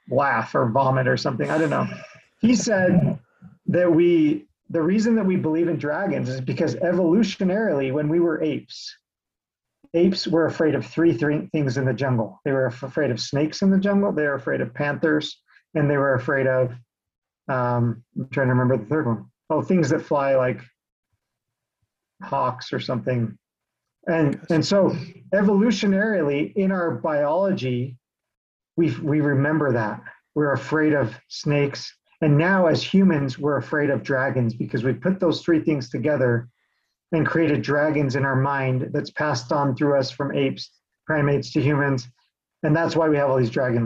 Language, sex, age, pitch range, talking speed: English, male, 40-59, 135-175 Hz, 170 wpm